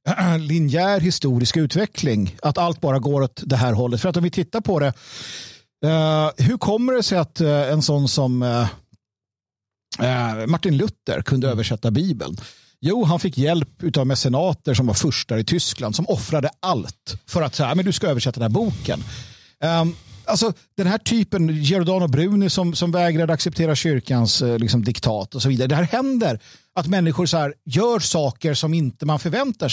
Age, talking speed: 50-69, 170 wpm